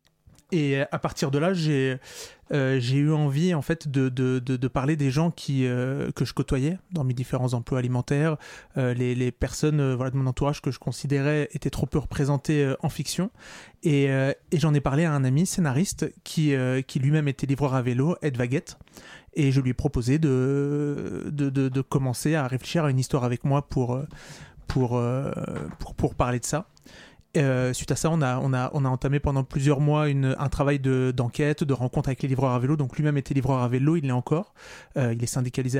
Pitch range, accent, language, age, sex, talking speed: 130-150 Hz, French, French, 30-49, male, 215 wpm